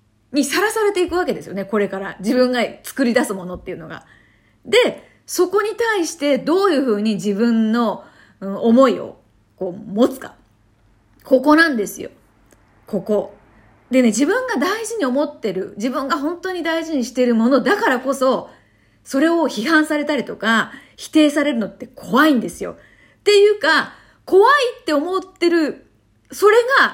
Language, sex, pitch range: Japanese, female, 215-325 Hz